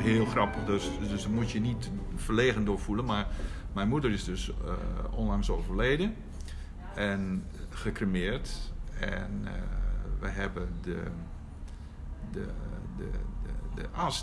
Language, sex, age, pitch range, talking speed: Dutch, male, 50-69, 80-110 Hz, 125 wpm